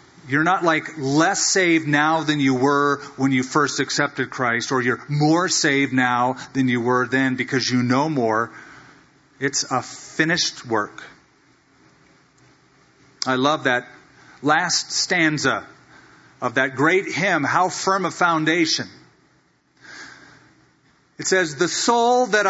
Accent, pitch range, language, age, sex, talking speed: American, 135-175 Hz, English, 40-59, male, 130 wpm